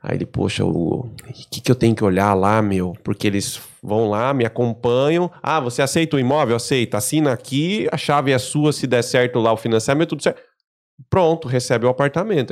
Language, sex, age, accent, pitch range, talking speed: Portuguese, male, 20-39, Brazilian, 120-175 Hz, 200 wpm